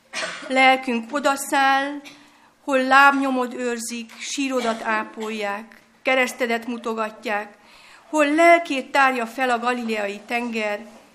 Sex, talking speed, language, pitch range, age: female, 85 wpm, Hungarian, 220-270 Hz, 50-69